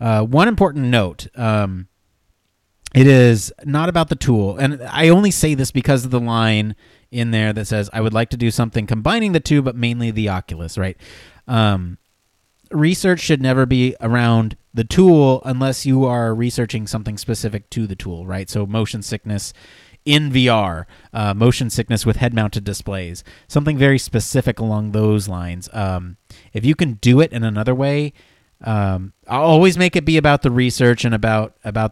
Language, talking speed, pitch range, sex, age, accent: English, 175 wpm, 105-135 Hz, male, 30-49, American